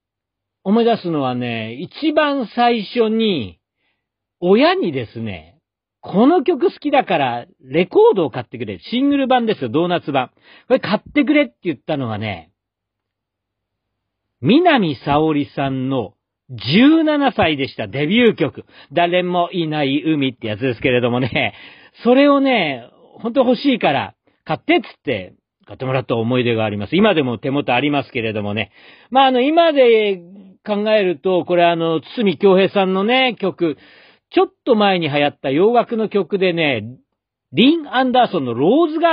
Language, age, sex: Japanese, 50-69, male